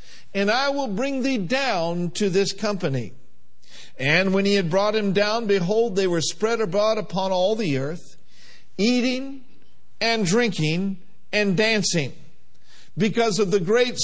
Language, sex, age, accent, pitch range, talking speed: English, male, 50-69, American, 175-230 Hz, 145 wpm